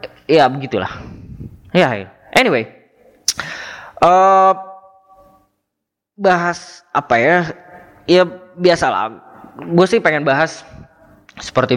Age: 20-39